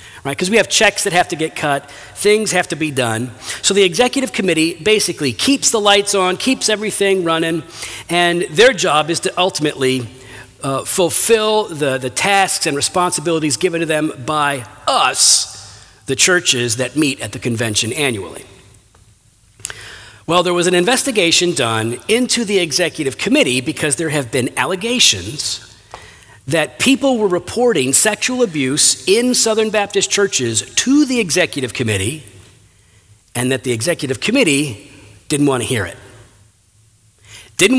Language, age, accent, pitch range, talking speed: English, 50-69, American, 115-180 Hz, 145 wpm